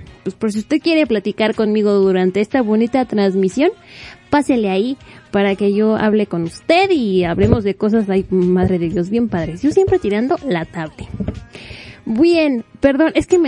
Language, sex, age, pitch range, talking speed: Spanish, female, 20-39, 200-290 Hz, 175 wpm